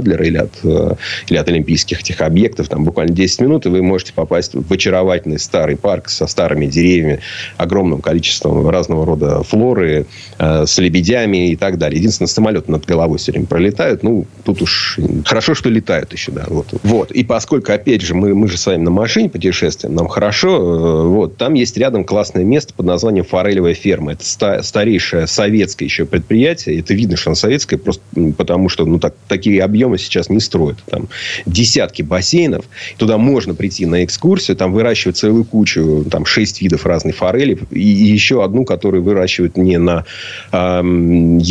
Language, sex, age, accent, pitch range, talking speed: Russian, male, 30-49, native, 85-105 Hz, 175 wpm